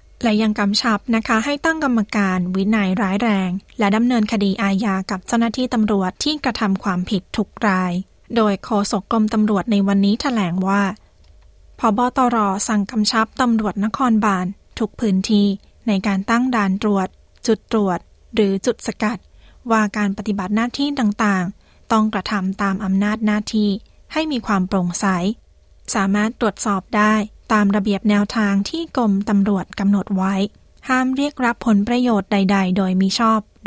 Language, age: Thai, 20-39